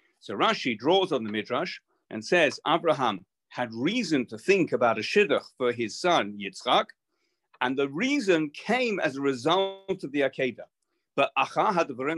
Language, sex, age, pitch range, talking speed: English, male, 40-59, 120-165 Hz, 155 wpm